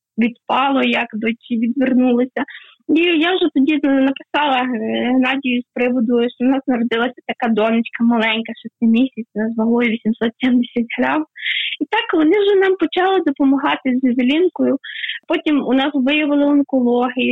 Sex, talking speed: female, 135 wpm